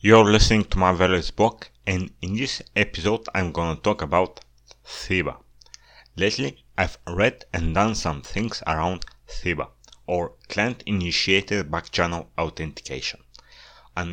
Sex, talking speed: male, 140 wpm